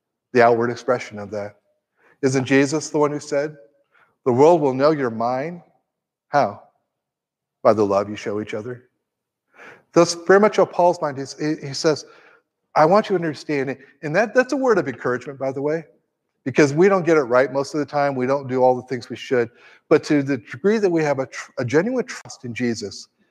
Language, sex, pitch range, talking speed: English, male, 120-160 Hz, 210 wpm